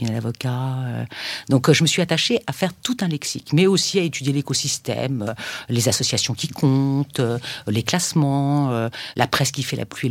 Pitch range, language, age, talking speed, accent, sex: 120-150 Hz, French, 50-69, 170 wpm, French, female